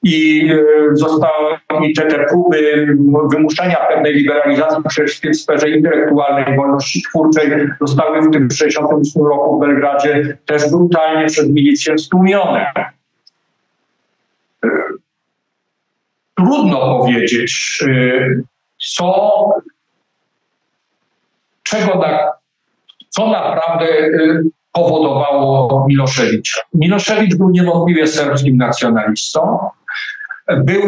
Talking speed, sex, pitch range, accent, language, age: 80 wpm, male, 145-185 Hz, native, Polish, 50-69